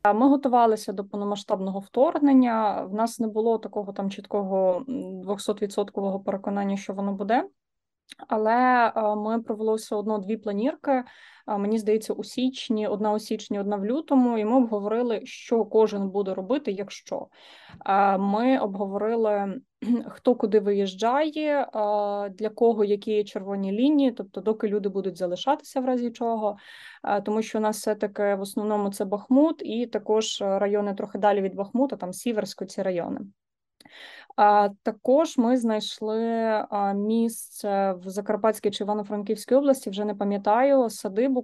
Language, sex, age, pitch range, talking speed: Ukrainian, female, 20-39, 205-235 Hz, 135 wpm